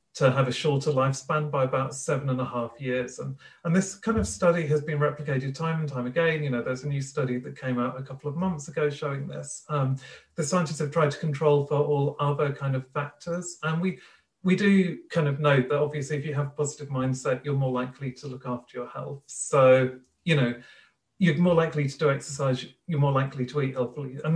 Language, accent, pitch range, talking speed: English, British, 130-155 Hz, 225 wpm